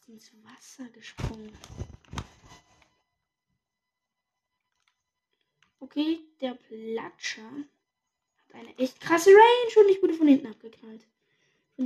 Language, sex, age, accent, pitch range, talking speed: German, female, 10-29, German, 225-290 Hz, 90 wpm